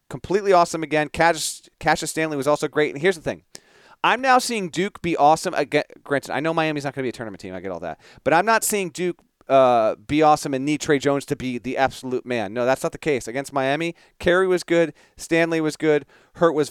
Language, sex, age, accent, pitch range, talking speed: English, male, 40-59, American, 130-165 Hz, 240 wpm